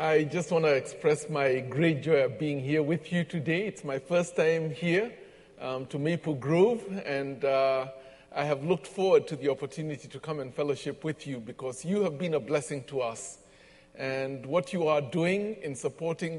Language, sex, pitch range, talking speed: English, male, 135-165 Hz, 195 wpm